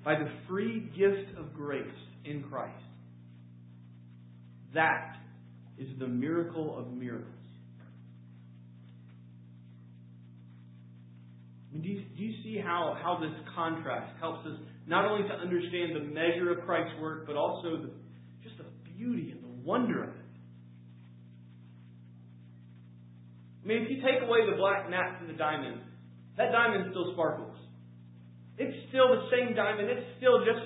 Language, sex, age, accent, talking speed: English, male, 40-59, American, 140 wpm